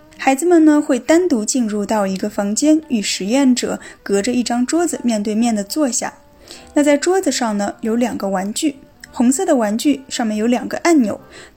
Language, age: Chinese, 10-29